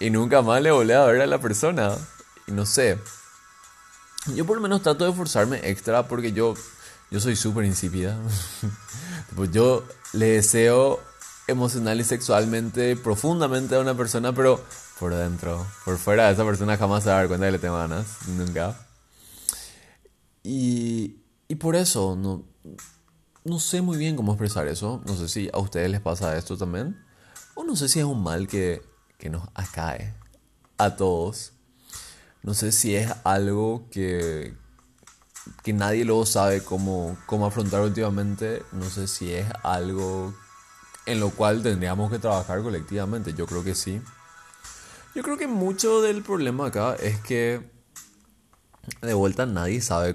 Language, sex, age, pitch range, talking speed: Spanish, male, 20-39, 95-120 Hz, 160 wpm